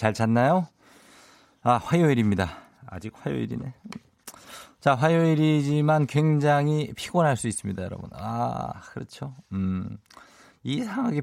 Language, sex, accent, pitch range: Korean, male, native, 95-140 Hz